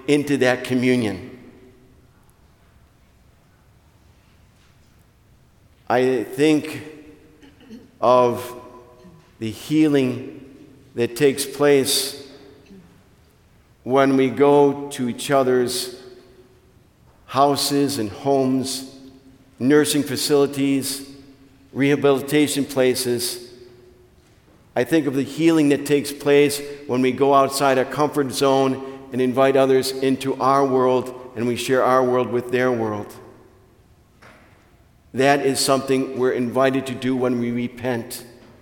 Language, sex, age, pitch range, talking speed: English, male, 50-69, 125-140 Hz, 100 wpm